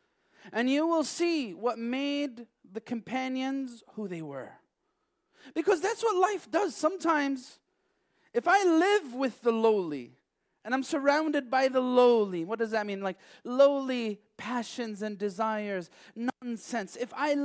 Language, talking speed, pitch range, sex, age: English, 140 wpm, 215-315 Hz, male, 30-49